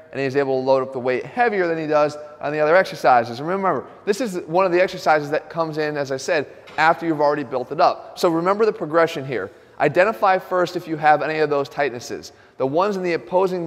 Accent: American